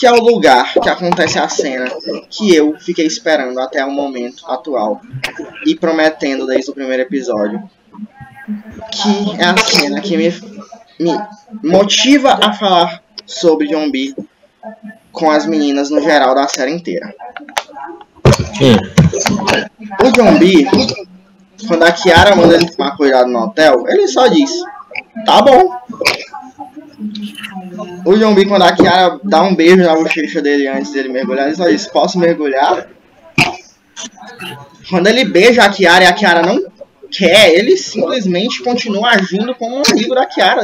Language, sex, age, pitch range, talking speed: Portuguese, male, 20-39, 160-220 Hz, 140 wpm